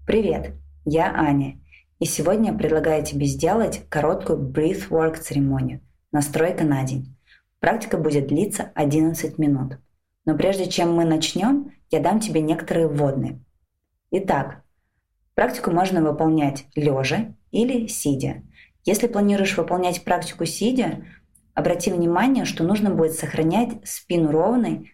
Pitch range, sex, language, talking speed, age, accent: 145-180 Hz, female, Russian, 130 wpm, 20-39, native